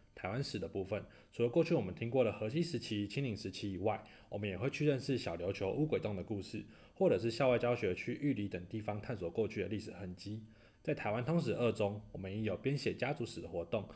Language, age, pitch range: Chinese, 20-39, 95-125 Hz